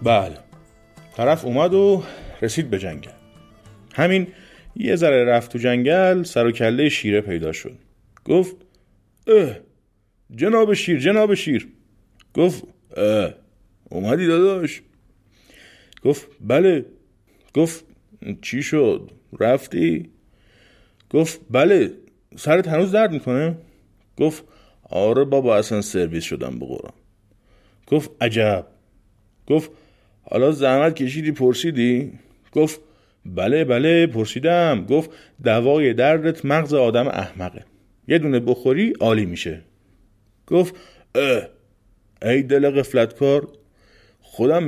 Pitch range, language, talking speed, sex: 100-155 Hz, Persian, 100 wpm, male